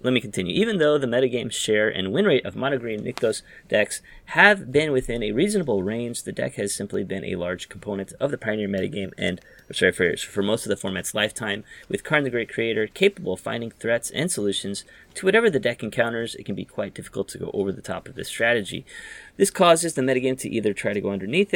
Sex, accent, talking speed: male, American, 230 wpm